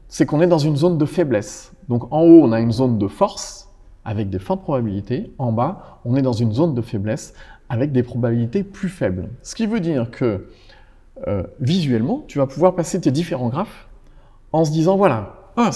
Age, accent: 40-59, French